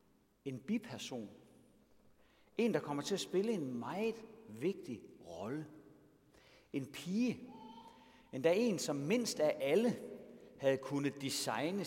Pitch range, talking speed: 120-165 Hz, 115 wpm